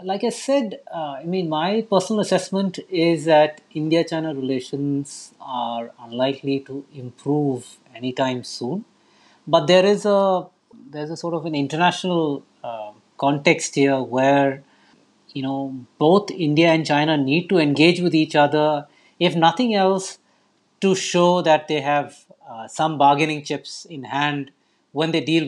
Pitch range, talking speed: 130-160 Hz, 145 wpm